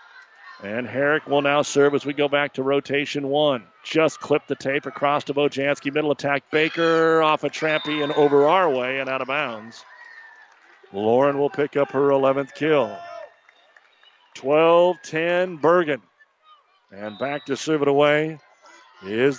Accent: American